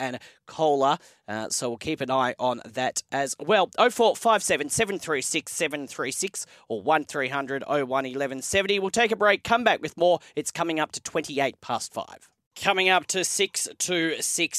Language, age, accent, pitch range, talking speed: English, 30-49, Australian, 130-170 Hz, 220 wpm